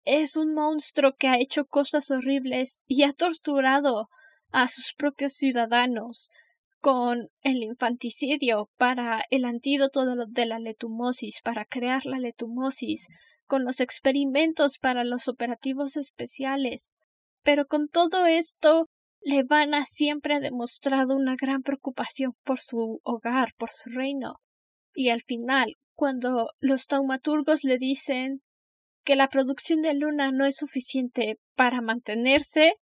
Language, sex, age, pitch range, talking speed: Spanish, female, 10-29, 250-295 Hz, 130 wpm